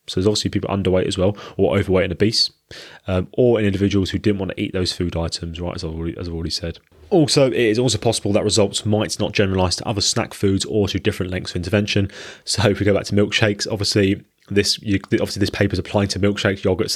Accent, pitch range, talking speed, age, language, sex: British, 90-105 Hz, 245 wpm, 20-39, English, male